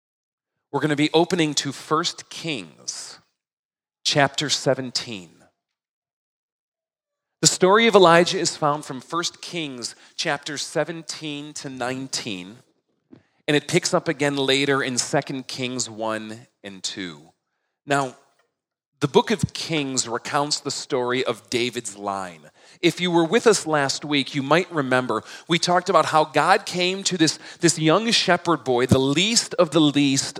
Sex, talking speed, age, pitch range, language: male, 140 wpm, 40-59, 135-175 Hz, English